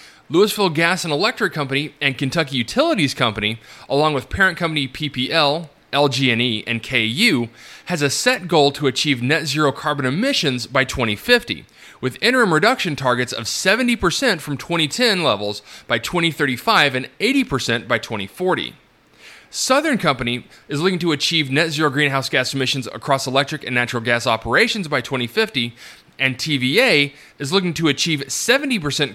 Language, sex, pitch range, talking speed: English, male, 125-165 Hz, 145 wpm